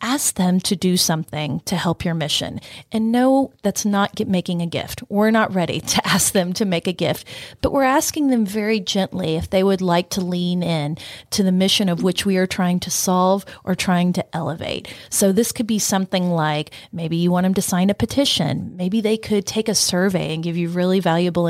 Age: 30-49